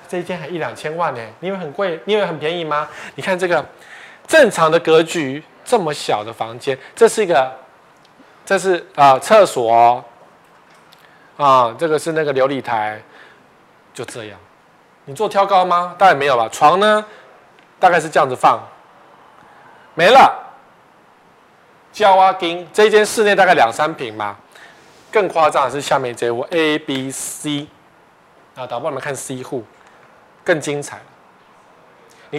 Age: 20-39